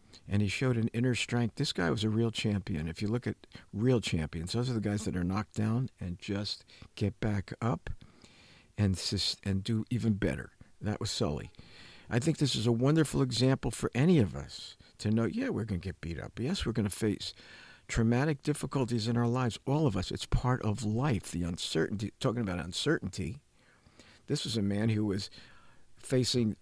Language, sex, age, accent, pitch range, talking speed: English, male, 50-69, American, 95-120 Hz, 200 wpm